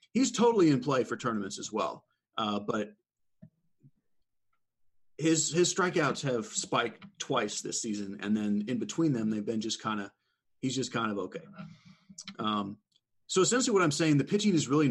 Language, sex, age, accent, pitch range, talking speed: English, male, 30-49, American, 105-145 Hz, 175 wpm